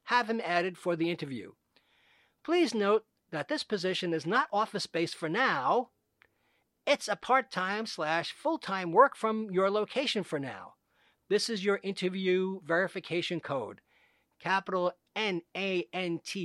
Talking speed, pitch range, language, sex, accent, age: 130 wpm, 165-215 Hz, English, male, American, 50-69